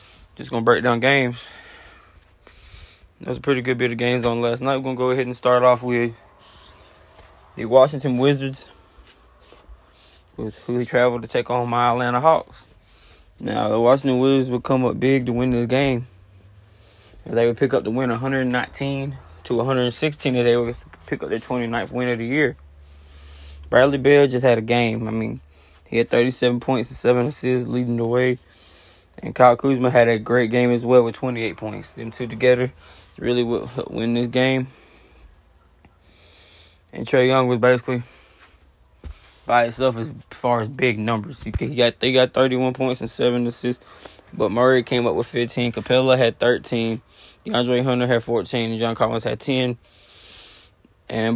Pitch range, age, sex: 105-125 Hz, 10-29, male